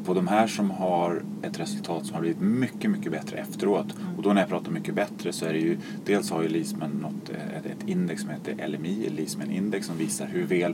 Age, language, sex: 30-49, Swedish, male